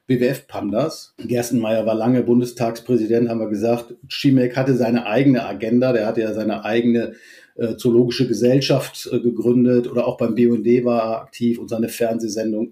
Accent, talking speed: German, 160 wpm